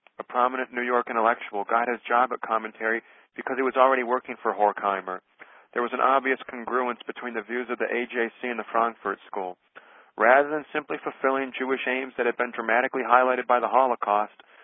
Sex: male